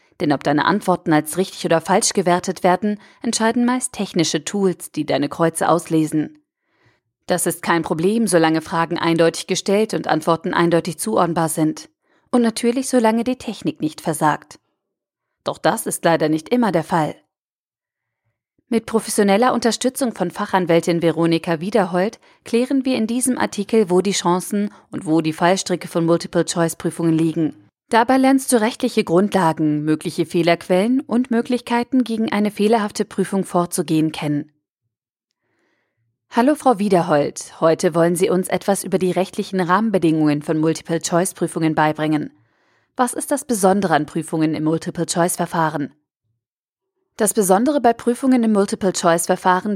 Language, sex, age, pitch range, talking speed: German, female, 40-59, 165-210 Hz, 135 wpm